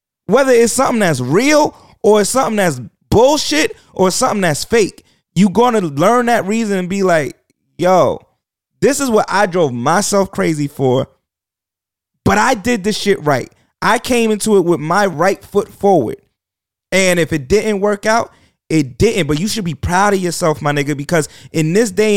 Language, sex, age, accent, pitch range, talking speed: English, male, 30-49, American, 140-200 Hz, 180 wpm